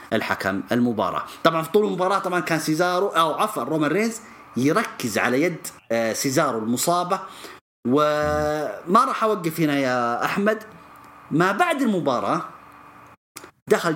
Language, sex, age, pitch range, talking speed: English, male, 30-49, 130-200 Hz, 120 wpm